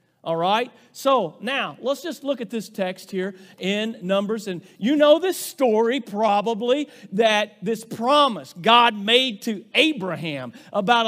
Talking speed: 145 wpm